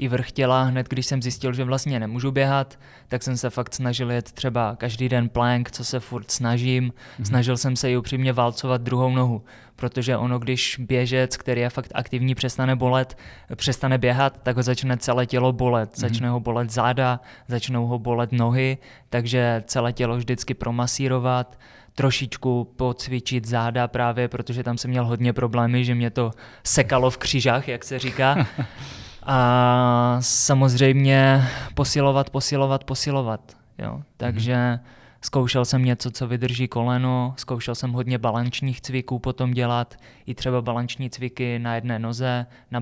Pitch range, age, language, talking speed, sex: 120-130 Hz, 20-39, Czech, 155 wpm, male